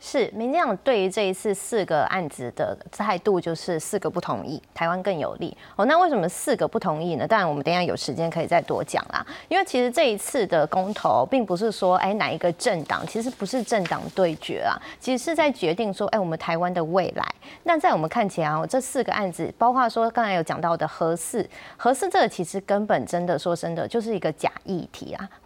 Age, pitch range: 20-39, 170-245 Hz